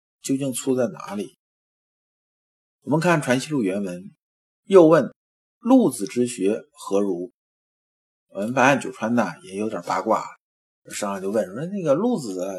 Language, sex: Chinese, male